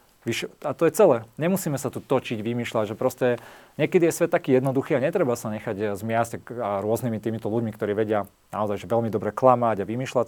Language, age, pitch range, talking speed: Slovak, 40-59, 110-125 Hz, 185 wpm